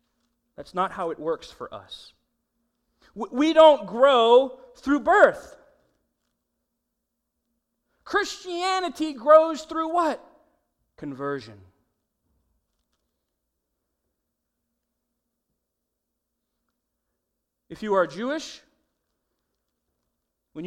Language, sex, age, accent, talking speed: English, male, 40-59, American, 65 wpm